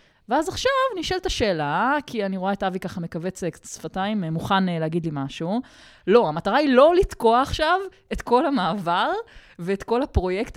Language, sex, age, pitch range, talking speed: Hebrew, female, 20-39, 170-260 Hz, 160 wpm